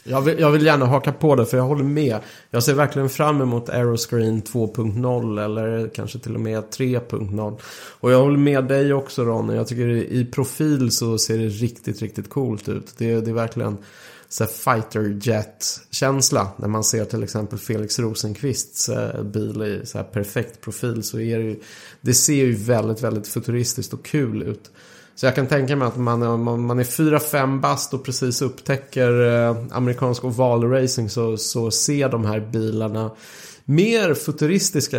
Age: 30-49